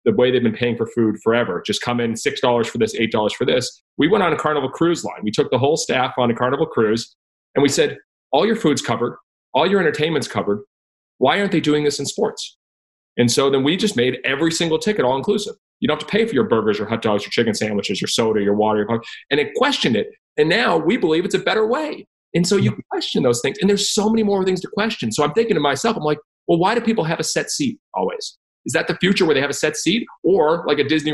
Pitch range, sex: 120-200 Hz, male